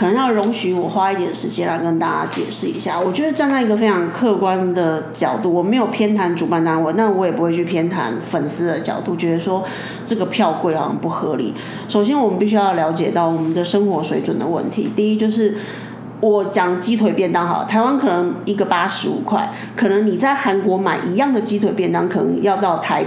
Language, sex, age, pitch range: Chinese, female, 30-49, 180-225 Hz